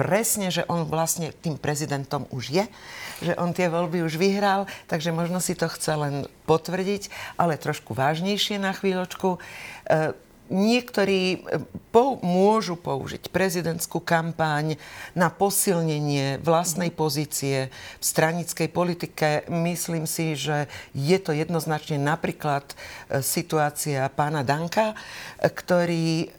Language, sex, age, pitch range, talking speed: Slovak, female, 50-69, 150-180 Hz, 110 wpm